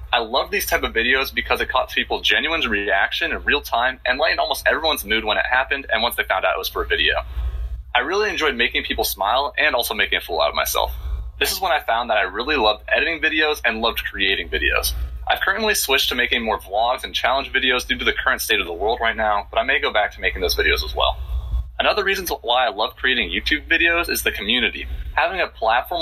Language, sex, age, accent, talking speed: English, male, 30-49, American, 245 wpm